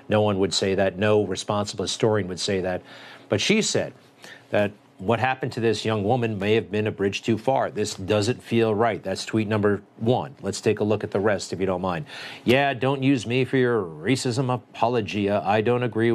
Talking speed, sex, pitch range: 215 wpm, male, 105-130 Hz